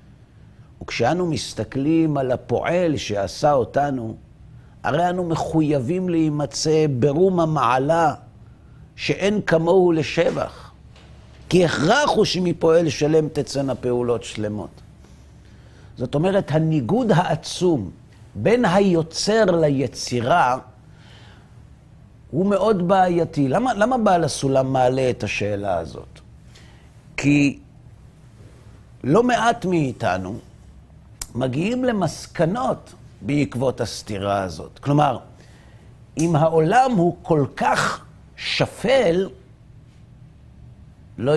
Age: 50-69